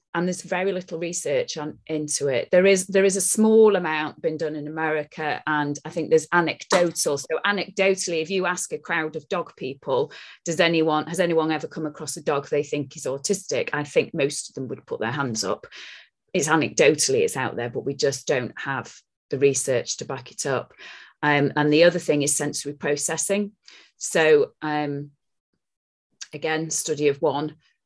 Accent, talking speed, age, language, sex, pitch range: British, 185 wpm, 40-59, English, female, 155-190 Hz